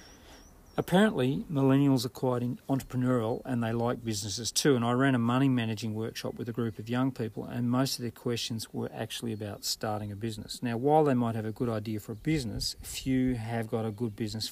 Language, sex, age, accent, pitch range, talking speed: English, male, 40-59, Australian, 110-130 Hz, 205 wpm